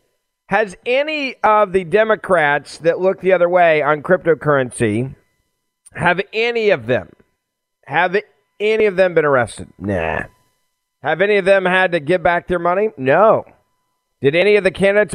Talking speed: 155 wpm